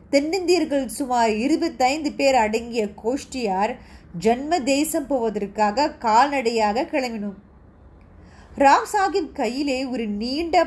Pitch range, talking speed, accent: 220-295 Hz, 55 wpm, native